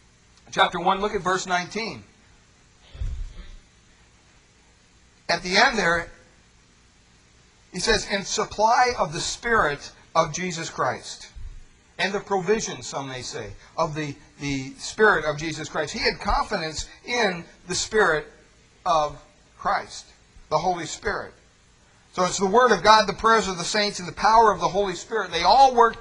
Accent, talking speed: American, 150 wpm